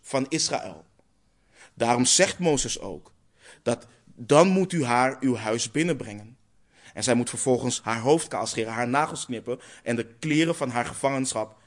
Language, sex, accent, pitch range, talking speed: English, male, Dutch, 115-140 Hz, 155 wpm